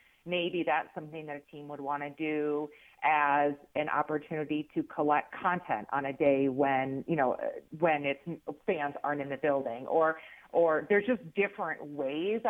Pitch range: 145-170 Hz